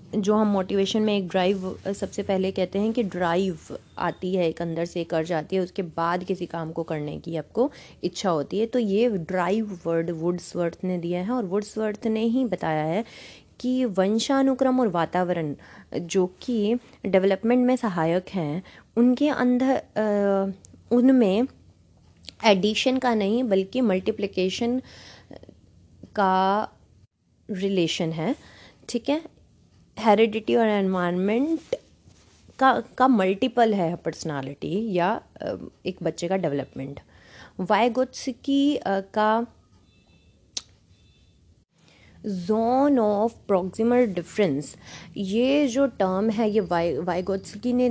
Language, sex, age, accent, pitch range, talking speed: Hindi, female, 20-39, native, 175-235 Hz, 120 wpm